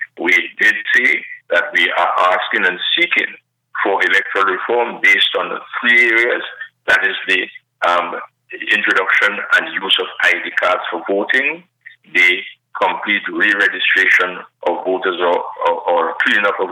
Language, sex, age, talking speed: English, male, 50-69, 140 wpm